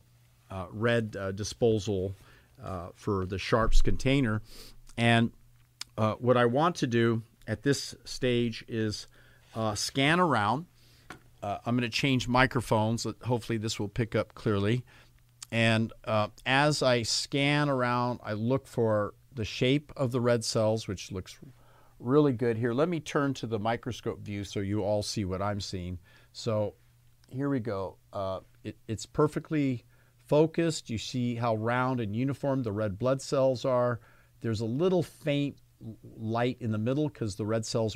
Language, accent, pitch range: English, American, 110-130 Hz